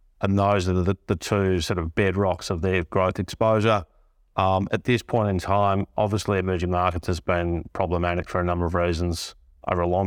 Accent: Australian